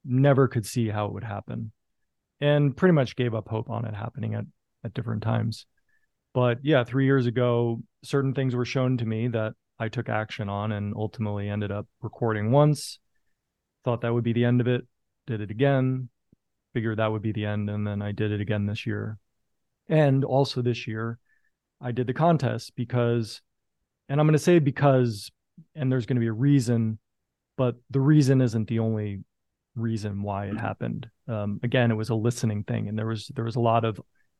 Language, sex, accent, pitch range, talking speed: English, male, American, 110-125 Hz, 200 wpm